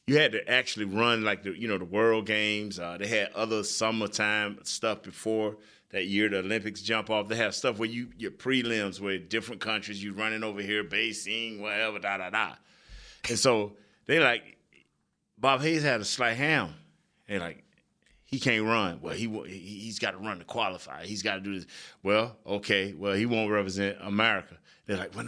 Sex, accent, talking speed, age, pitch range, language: male, American, 190 wpm, 30-49, 100-120 Hz, English